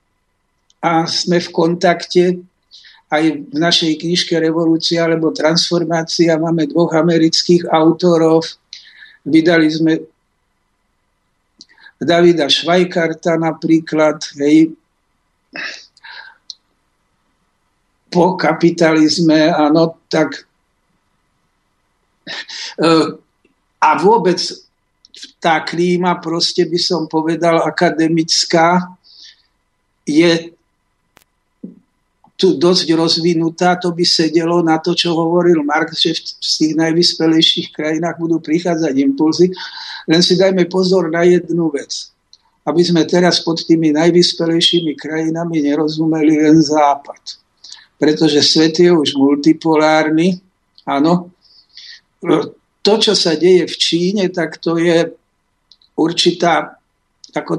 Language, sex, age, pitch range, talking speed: Slovak, male, 60-79, 155-175 Hz, 90 wpm